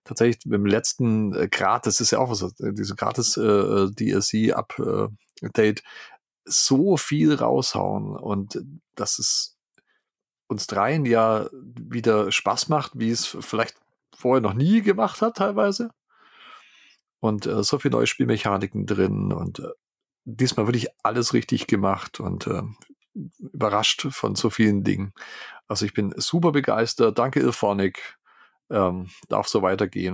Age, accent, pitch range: 40-59, German, 100-130 Hz